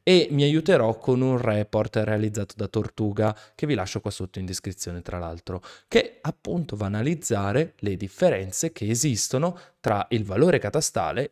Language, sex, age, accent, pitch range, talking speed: Italian, male, 20-39, native, 105-145 Hz, 165 wpm